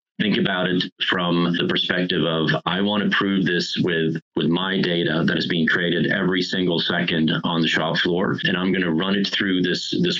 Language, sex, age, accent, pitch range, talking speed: English, male, 30-49, American, 80-95 Hz, 210 wpm